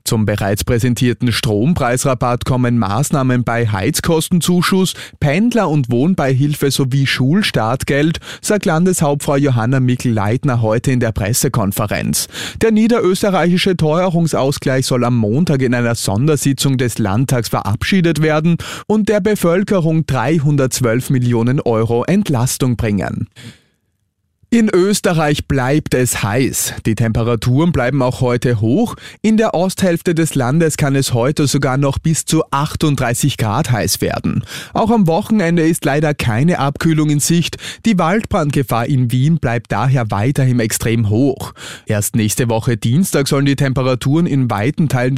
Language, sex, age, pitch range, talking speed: German, male, 30-49, 120-165 Hz, 130 wpm